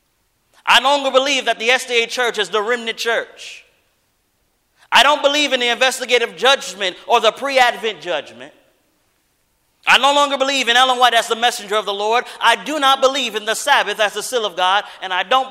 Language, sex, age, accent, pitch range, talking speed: English, male, 30-49, American, 210-270 Hz, 195 wpm